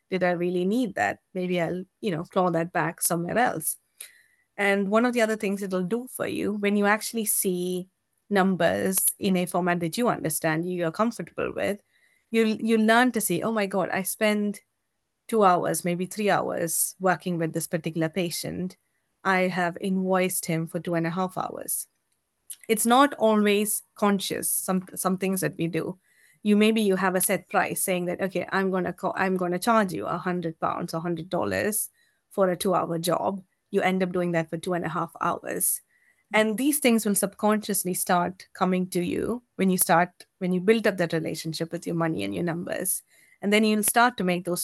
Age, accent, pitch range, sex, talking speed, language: 20-39, Indian, 175-205 Hz, female, 200 wpm, English